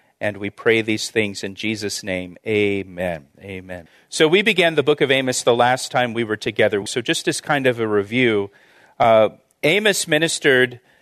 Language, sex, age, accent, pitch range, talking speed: English, male, 40-59, American, 120-150 Hz, 180 wpm